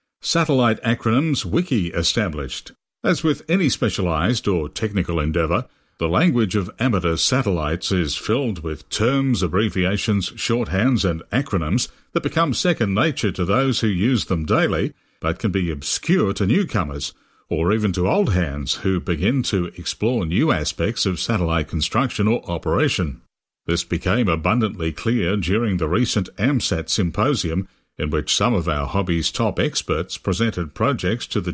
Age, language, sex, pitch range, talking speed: 60-79, English, male, 85-120 Hz, 145 wpm